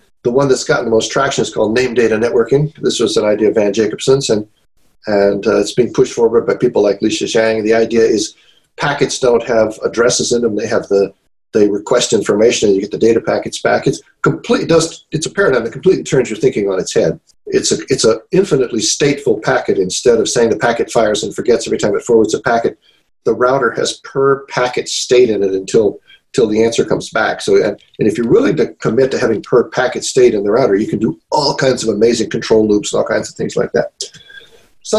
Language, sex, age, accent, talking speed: English, male, 50-69, American, 230 wpm